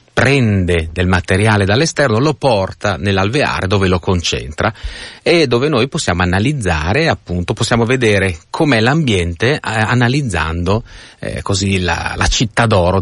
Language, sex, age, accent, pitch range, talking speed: Italian, male, 30-49, native, 85-110 Hz, 130 wpm